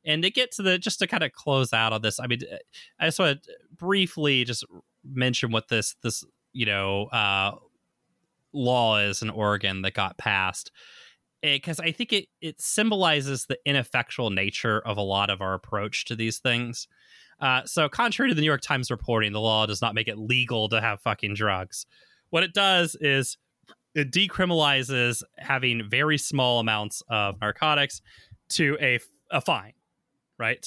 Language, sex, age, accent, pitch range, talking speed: English, male, 20-39, American, 110-155 Hz, 180 wpm